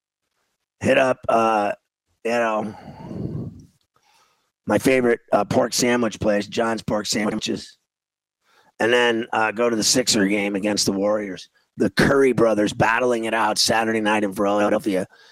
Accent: American